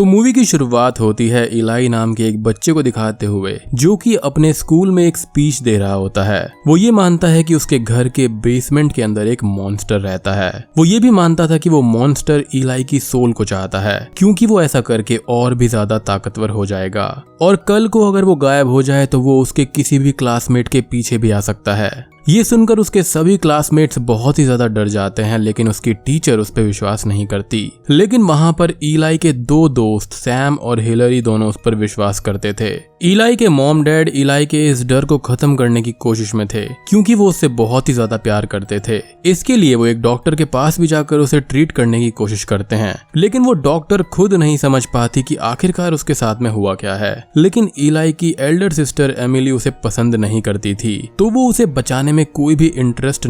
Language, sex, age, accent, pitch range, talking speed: Hindi, male, 20-39, native, 110-155 Hz, 215 wpm